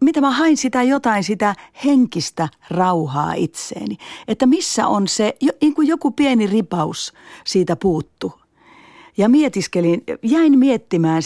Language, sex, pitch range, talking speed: Finnish, female, 180-270 Hz, 130 wpm